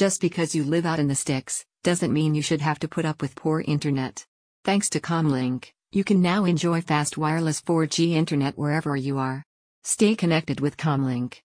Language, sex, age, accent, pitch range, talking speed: English, female, 50-69, American, 145-165 Hz, 195 wpm